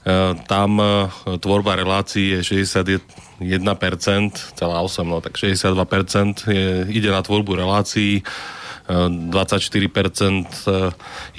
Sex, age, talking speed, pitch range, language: male, 30-49, 80 wpm, 95-105 Hz, Slovak